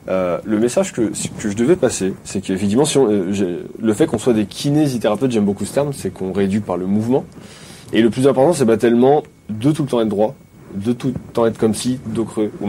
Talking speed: 235 wpm